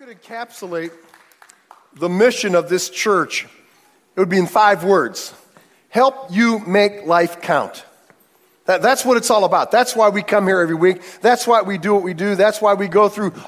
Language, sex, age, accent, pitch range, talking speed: English, male, 50-69, American, 185-250 Hz, 190 wpm